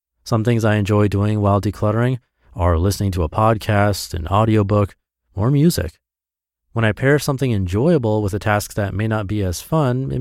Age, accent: 30-49, American